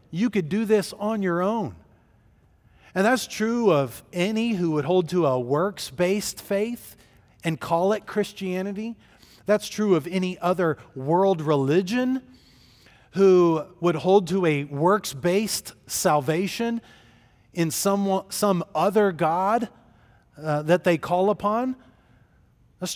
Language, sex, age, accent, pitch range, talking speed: English, male, 40-59, American, 125-185 Hz, 125 wpm